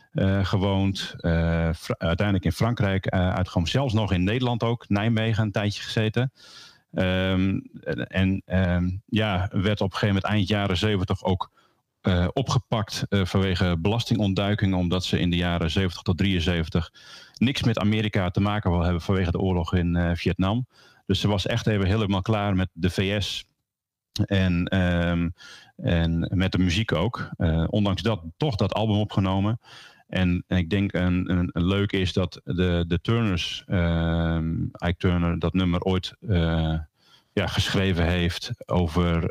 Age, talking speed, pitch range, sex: 40-59, 160 wpm, 85-105 Hz, male